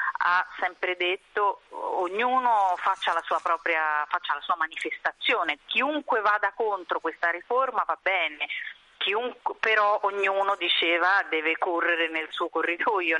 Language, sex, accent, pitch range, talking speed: Italian, female, native, 160-195 Hz, 125 wpm